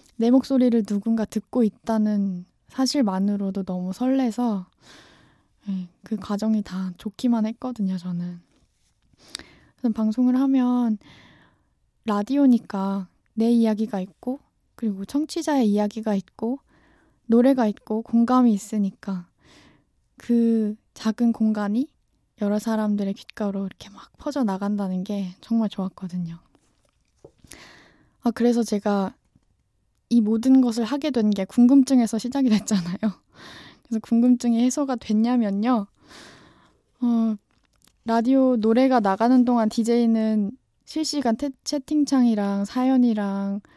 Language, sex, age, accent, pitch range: Korean, female, 10-29, native, 205-250 Hz